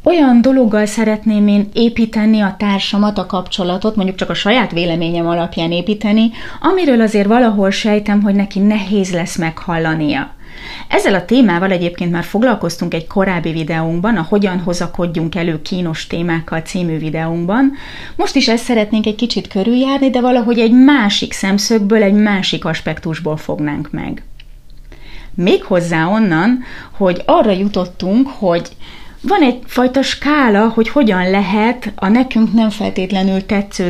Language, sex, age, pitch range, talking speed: Hungarian, female, 30-49, 180-240 Hz, 135 wpm